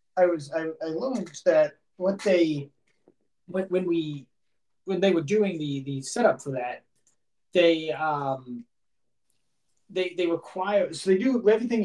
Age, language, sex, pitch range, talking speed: 30-49, English, male, 140-170 Hz, 145 wpm